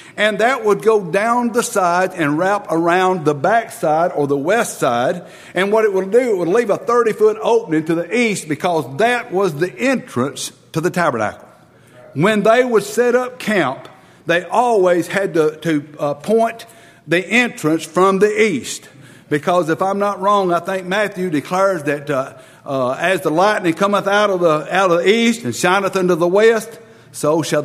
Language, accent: English, American